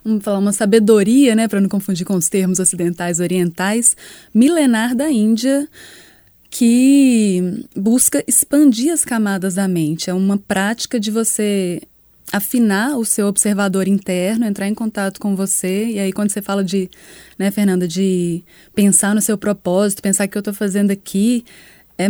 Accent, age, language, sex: Brazilian, 20-39, Portuguese, female